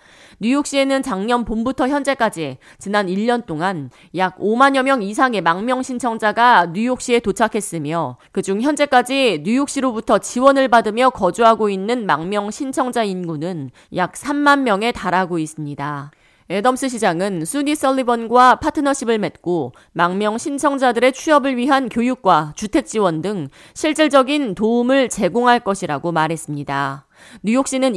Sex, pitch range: female, 180-255 Hz